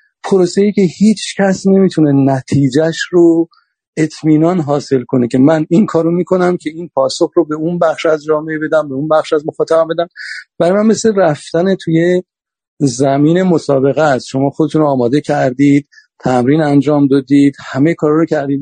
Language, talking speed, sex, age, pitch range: Persian, 165 wpm, male, 50-69, 140-175 Hz